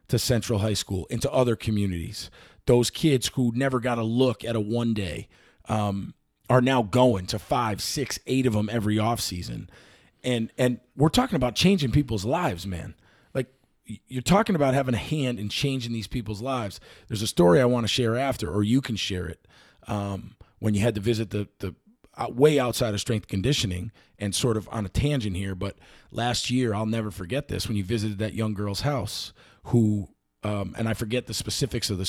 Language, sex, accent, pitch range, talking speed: English, male, American, 105-125 Hz, 200 wpm